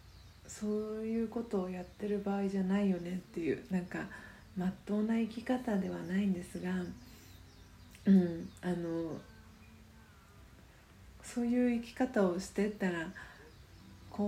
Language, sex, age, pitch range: Japanese, female, 40-59, 160-200 Hz